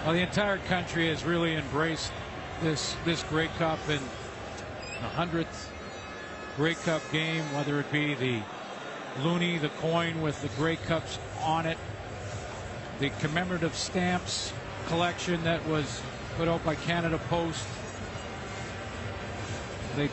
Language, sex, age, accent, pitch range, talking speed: English, male, 50-69, American, 120-180 Hz, 125 wpm